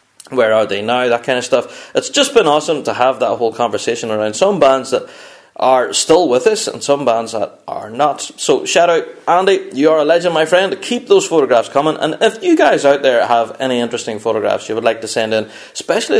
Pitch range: 125-195 Hz